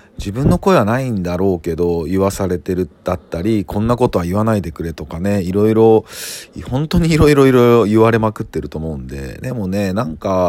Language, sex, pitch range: Japanese, male, 85-115 Hz